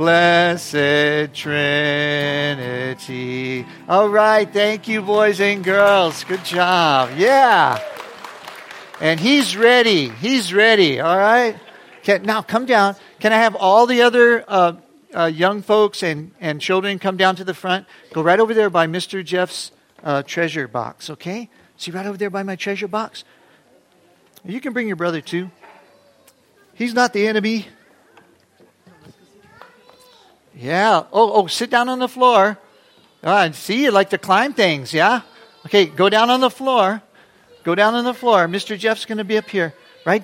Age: 50-69